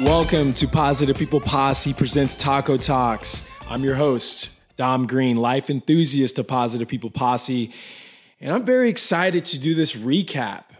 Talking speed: 150 wpm